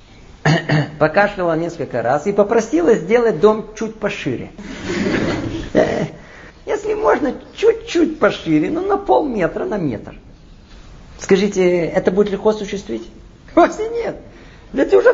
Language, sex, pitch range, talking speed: Russian, male, 170-255 Hz, 115 wpm